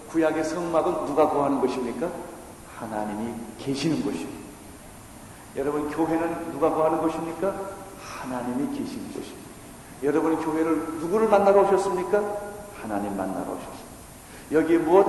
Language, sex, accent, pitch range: Korean, male, native, 145-205 Hz